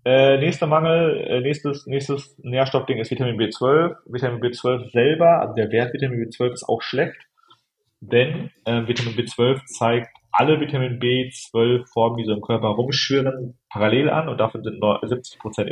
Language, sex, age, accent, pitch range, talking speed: German, male, 40-59, German, 110-135 Hz, 155 wpm